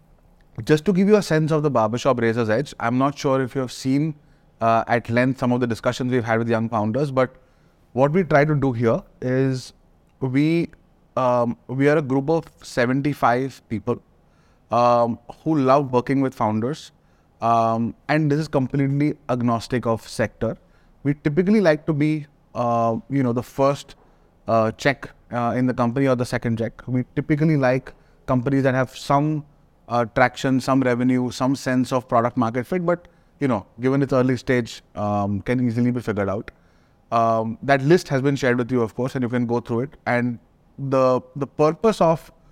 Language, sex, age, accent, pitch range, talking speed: English, male, 30-49, Indian, 120-140 Hz, 185 wpm